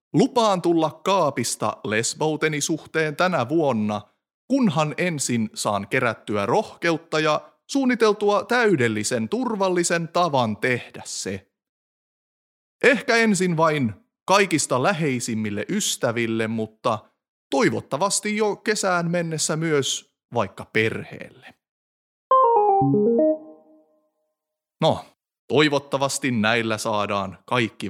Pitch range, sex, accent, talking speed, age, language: 105-175 Hz, male, native, 80 wpm, 30-49, Finnish